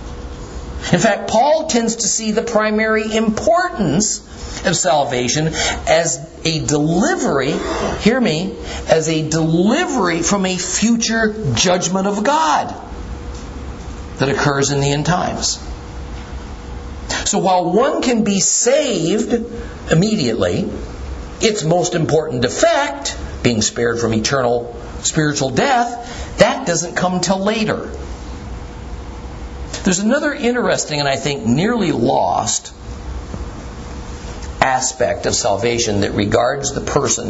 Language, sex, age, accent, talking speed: English, male, 50-69, American, 110 wpm